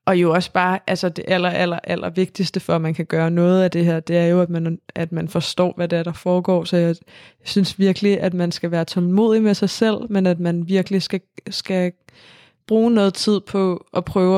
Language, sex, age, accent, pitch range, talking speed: Danish, female, 20-39, native, 180-210 Hz, 230 wpm